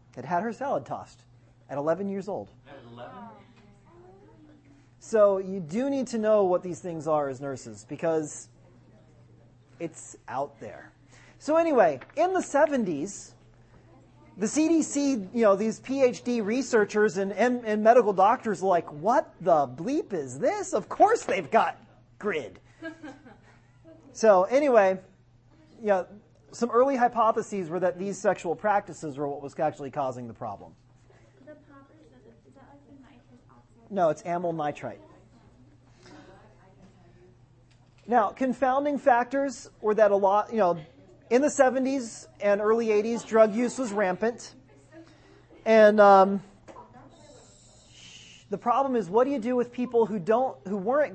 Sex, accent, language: male, American, English